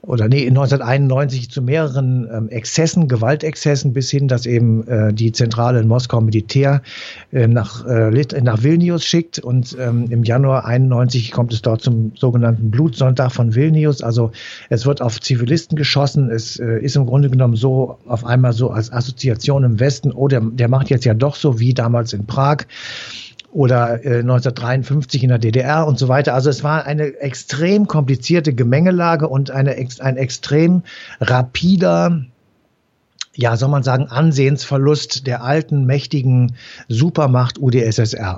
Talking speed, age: 145 wpm, 60-79